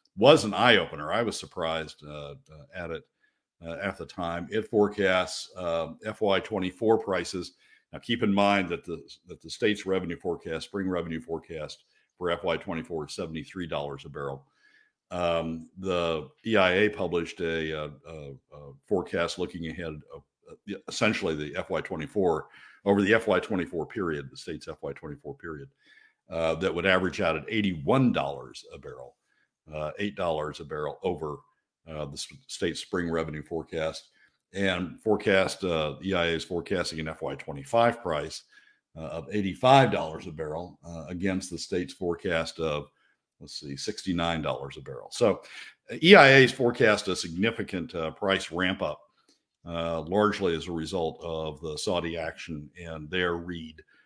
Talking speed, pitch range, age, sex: 150 wpm, 80-95 Hz, 60-79, male